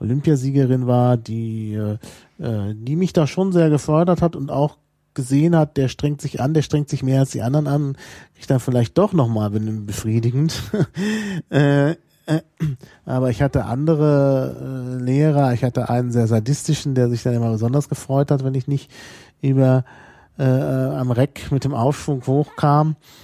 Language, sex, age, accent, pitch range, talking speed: German, male, 40-59, German, 125-155 Hz, 170 wpm